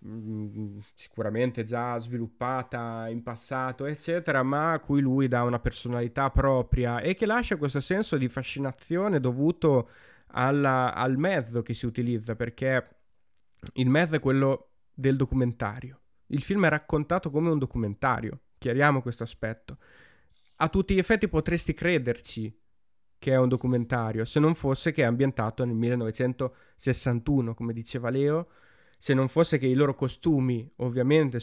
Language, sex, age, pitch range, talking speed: Italian, male, 20-39, 120-145 Hz, 140 wpm